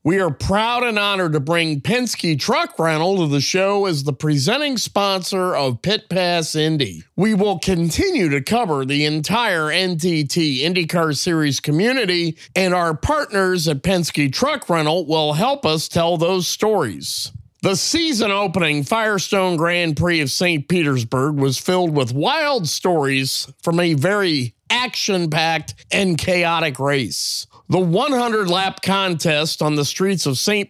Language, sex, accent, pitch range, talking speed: English, male, American, 150-195 Hz, 145 wpm